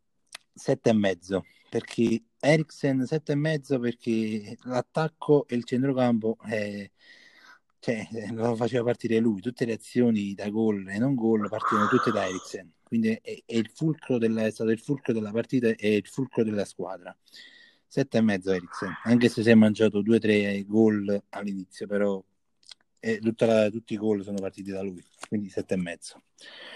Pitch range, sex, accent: 100-125 Hz, male, native